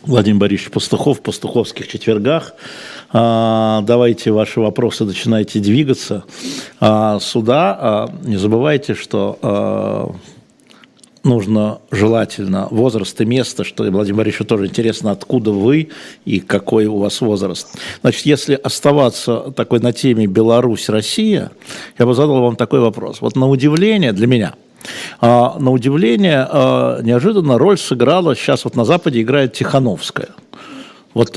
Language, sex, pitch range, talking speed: Russian, male, 110-145 Hz, 120 wpm